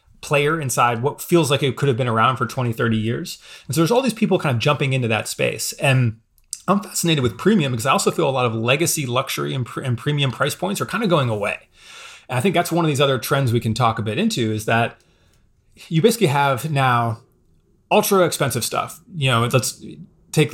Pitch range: 120-155 Hz